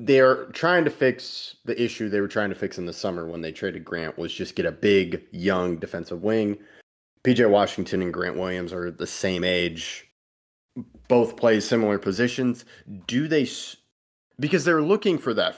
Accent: American